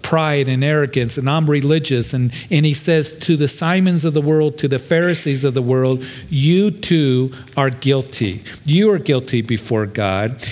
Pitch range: 125-160 Hz